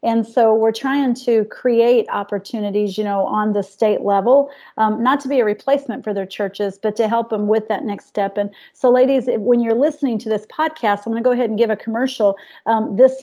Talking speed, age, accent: 230 wpm, 40-59, American